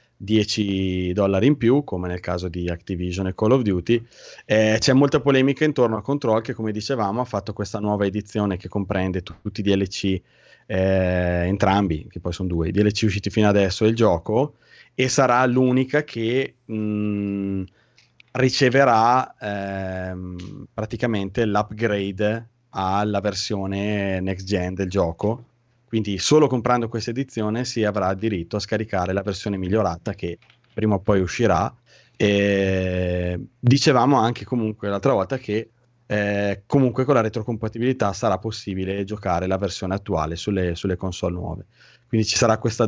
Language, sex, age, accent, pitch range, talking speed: Italian, male, 20-39, native, 95-115 Hz, 150 wpm